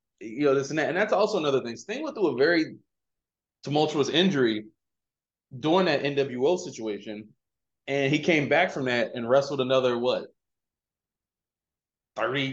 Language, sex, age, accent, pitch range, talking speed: English, male, 20-39, American, 125-150 Hz, 155 wpm